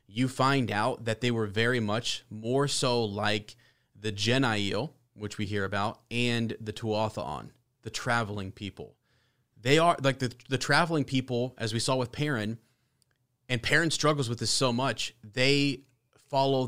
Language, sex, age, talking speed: English, male, 30-49, 160 wpm